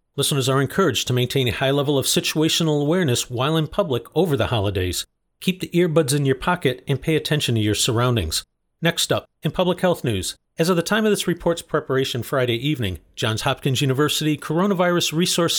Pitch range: 125-165 Hz